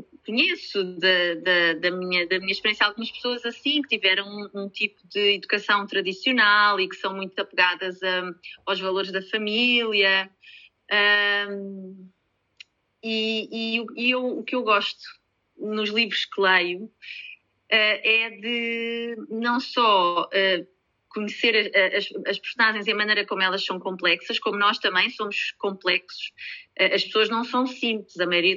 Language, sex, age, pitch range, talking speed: Portuguese, female, 30-49, 200-245 Hz, 135 wpm